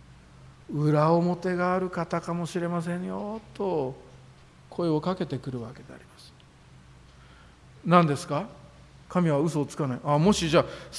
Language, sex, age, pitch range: Japanese, male, 50-69, 130-190 Hz